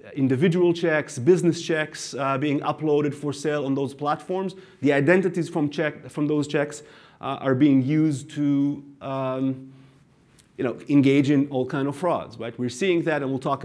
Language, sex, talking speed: English, male, 175 wpm